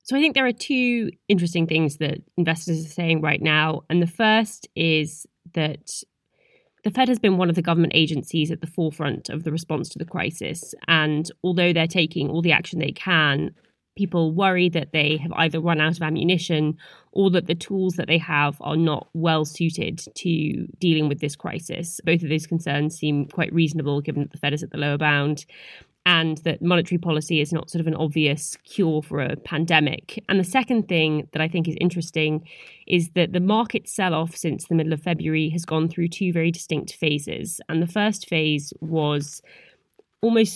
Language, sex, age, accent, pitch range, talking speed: English, female, 20-39, British, 155-180 Hz, 200 wpm